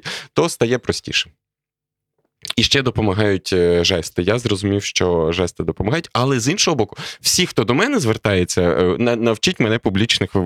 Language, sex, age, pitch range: Ukrainian, male, 20-39, 105-140 Hz